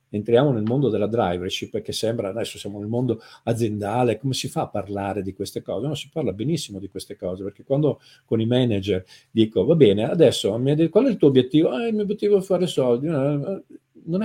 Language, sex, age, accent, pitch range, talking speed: Italian, male, 50-69, native, 105-135 Hz, 205 wpm